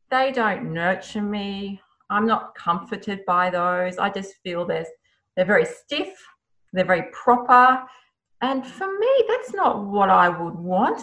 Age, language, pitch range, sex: 30-49, English, 180-230 Hz, female